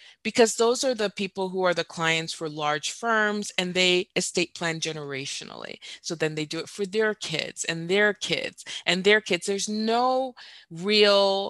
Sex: female